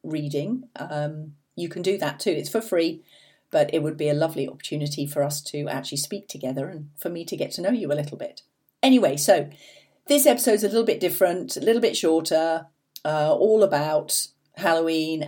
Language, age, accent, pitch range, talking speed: English, 40-59, British, 145-195 Hz, 195 wpm